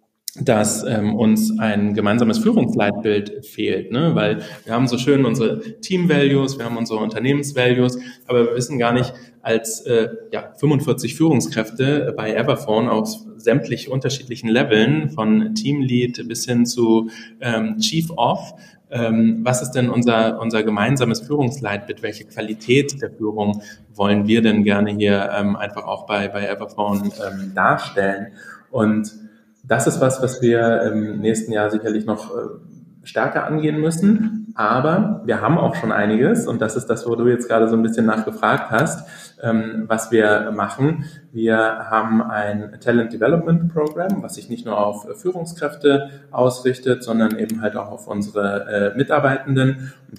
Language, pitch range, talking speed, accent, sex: German, 105-135 Hz, 150 wpm, German, male